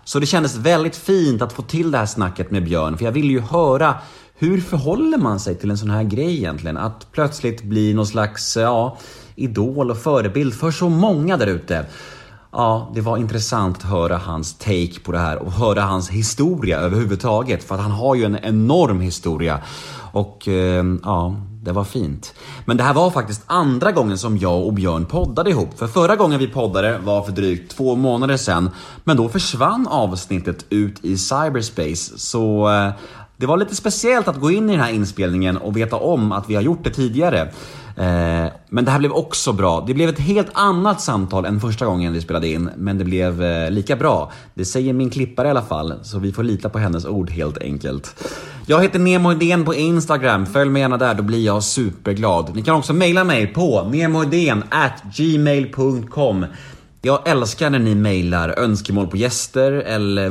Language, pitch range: Swedish, 95-140 Hz